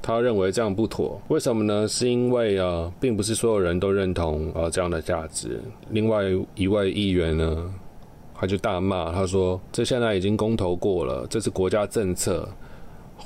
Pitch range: 90-110 Hz